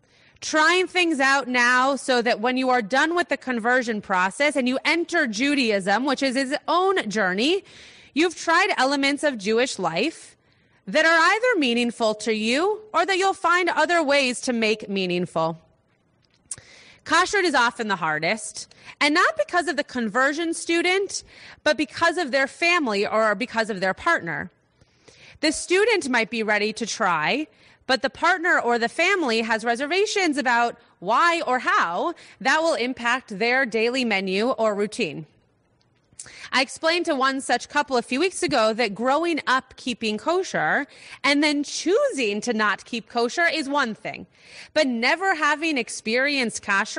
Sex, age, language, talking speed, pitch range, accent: female, 30-49, English, 155 wpm, 230-330 Hz, American